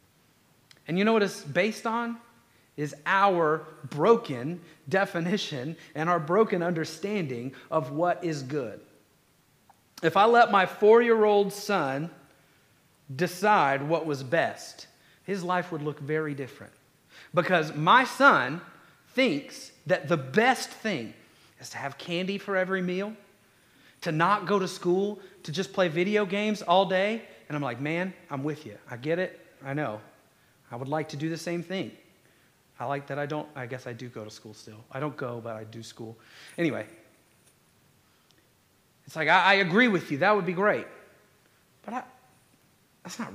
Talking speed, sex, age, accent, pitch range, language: 165 wpm, male, 40-59, American, 145-205 Hz, English